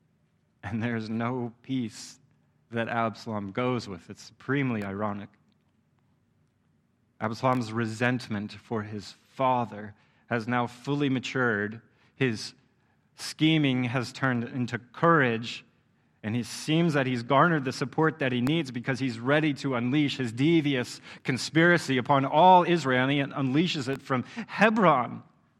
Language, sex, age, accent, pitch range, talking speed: English, male, 30-49, American, 115-150 Hz, 125 wpm